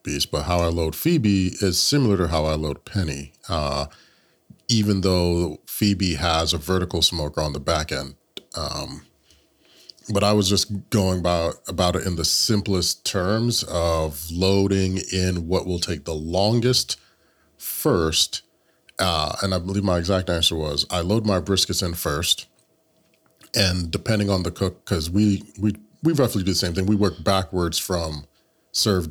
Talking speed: 165 wpm